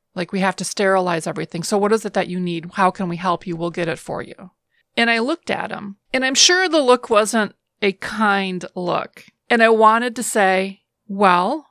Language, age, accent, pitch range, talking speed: English, 30-49, American, 185-225 Hz, 220 wpm